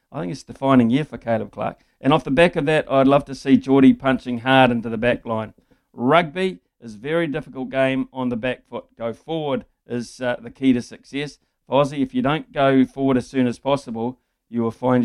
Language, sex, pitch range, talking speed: English, male, 120-140 Hz, 225 wpm